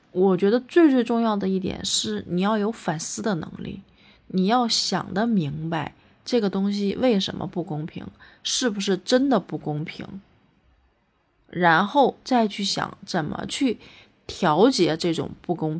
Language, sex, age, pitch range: Chinese, female, 30-49, 165-215 Hz